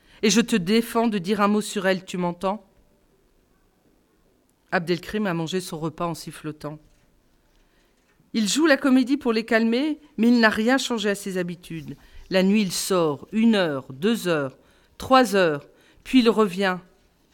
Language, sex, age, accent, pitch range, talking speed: French, female, 40-59, French, 180-250 Hz, 170 wpm